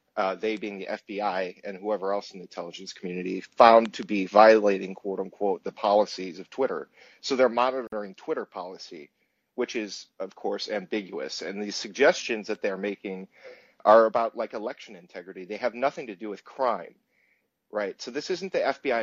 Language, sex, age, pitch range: English, male, 40-59, 95-115 Hz